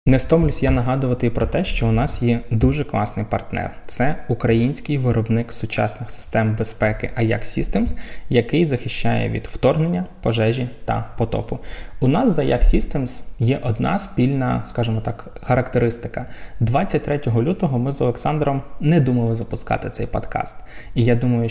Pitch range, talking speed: 115-135 Hz, 150 wpm